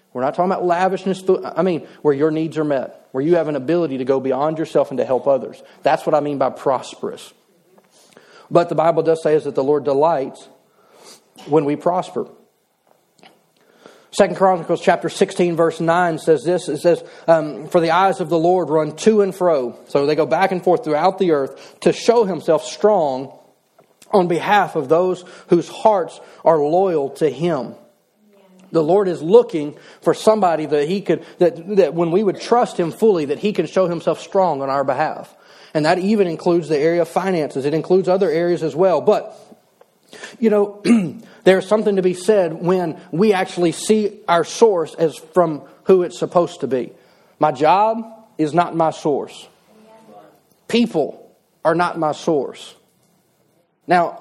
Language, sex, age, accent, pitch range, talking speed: English, male, 40-59, American, 160-190 Hz, 175 wpm